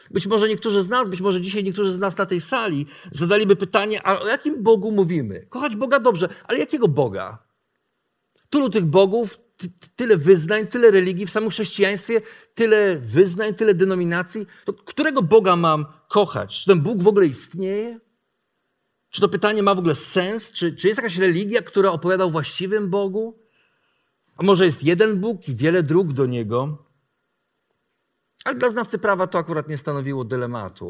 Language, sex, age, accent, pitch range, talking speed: Polish, male, 50-69, native, 145-205 Hz, 170 wpm